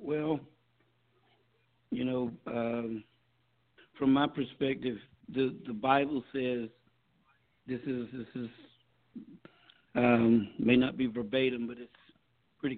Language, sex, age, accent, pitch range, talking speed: English, male, 60-79, American, 125-150 Hz, 110 wpm